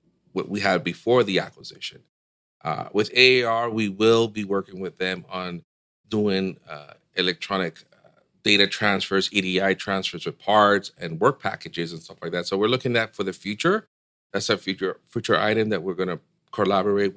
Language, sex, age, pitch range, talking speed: English, male, 40-59, 90-105 Hz, 175 wpm